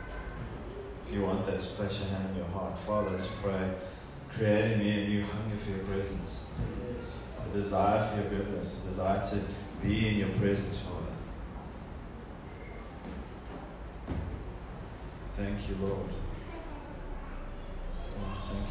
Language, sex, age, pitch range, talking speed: English, male, 20-39, 95-105 Hz, 130 wpm